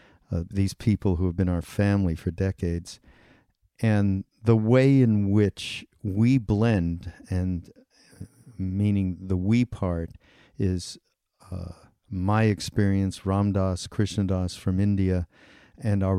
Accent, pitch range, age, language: American, 90-110 Hz, 50-69, English